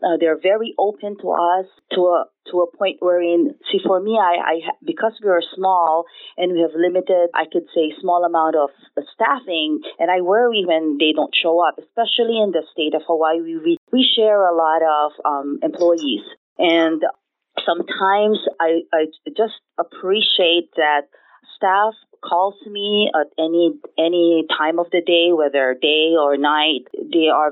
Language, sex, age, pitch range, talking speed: English, female, 30-49, 155-195 Hz, 170 wpm